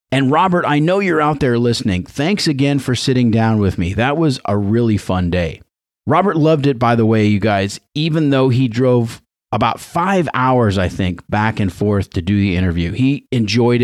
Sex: male